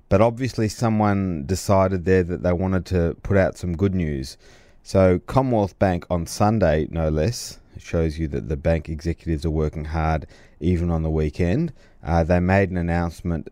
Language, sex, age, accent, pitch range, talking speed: English, male, 30-49, Australian, 80-95 Hz, 175 wpm